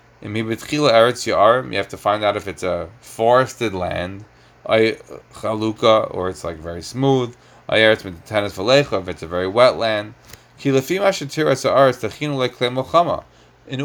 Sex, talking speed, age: male, 95 wpm, 30-49